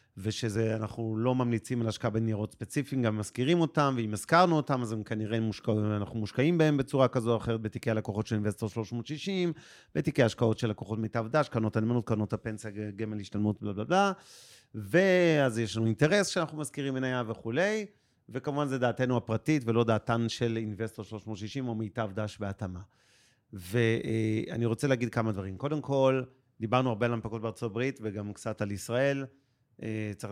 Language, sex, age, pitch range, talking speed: Hebrew, male, 40-59, 110-130 Hz, 150 wpm